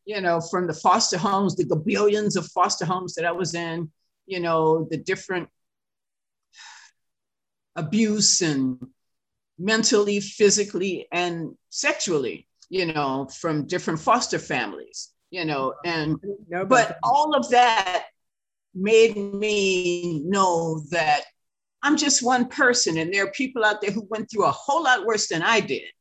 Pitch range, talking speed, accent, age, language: 165-215 Hz, 145 wpm, American, 50-69, English